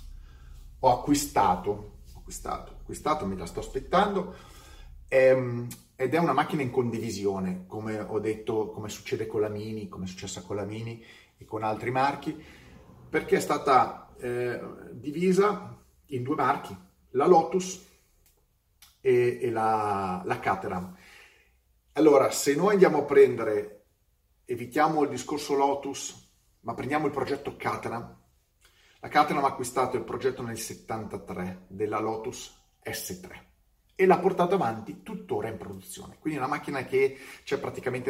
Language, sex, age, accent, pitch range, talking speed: Italian, male, 30-49, native, 95-155 Hz, 140 wpm